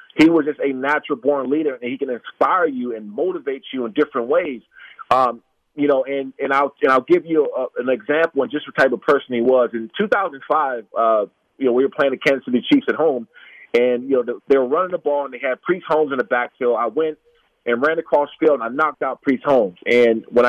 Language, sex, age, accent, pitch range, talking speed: English, male, 40-59, American, 125-160 Hz, 250 wpm